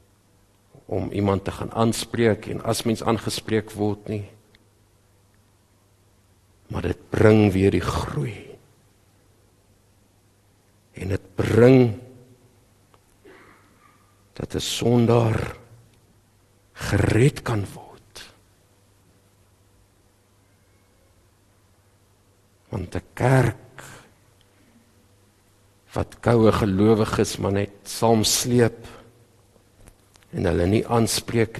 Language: English